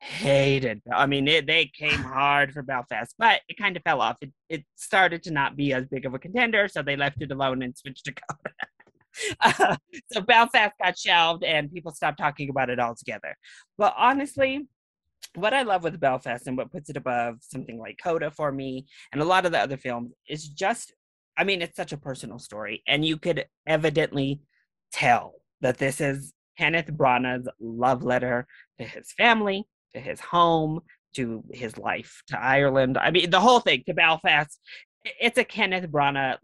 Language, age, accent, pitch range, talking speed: English, 20-39, American, 130-165 Hz, 190 wpm